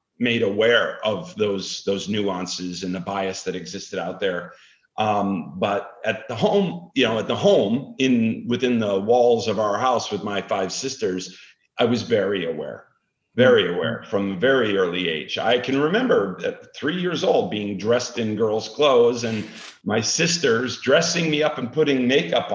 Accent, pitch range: American, 100-120 Hz